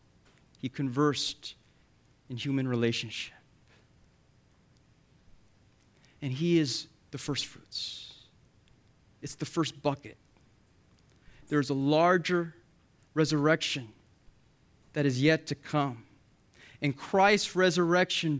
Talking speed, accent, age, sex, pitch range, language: 90 wpm, American, 30-49, male, 130-160 Hz, English